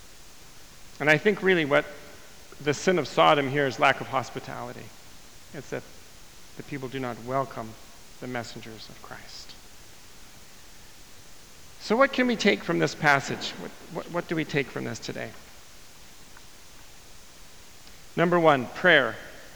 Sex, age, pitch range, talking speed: male, 40-59, 130-175 Hz, 135 wpm